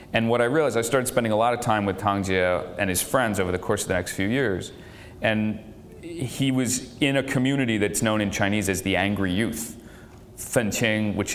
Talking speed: 215 wpm